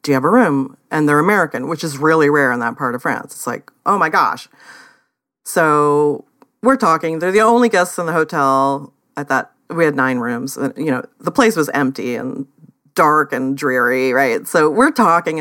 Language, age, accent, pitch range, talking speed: English, 40-59, American, 145-190 Hz, 205 wpm